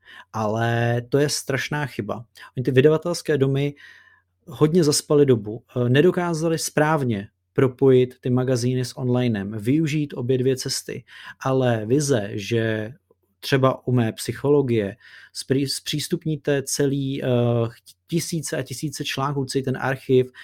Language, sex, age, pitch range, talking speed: Czech, male, 30-49, 120-145 Hz, 115 wpm